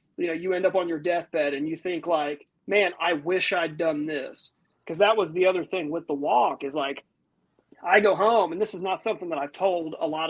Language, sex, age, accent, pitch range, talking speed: English, male, 30-49, American, 165-190 Hz, 245 wpm